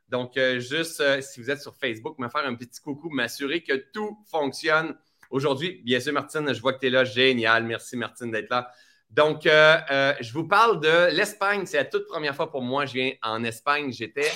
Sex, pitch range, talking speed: male, 125-155 Hz, 220 wpm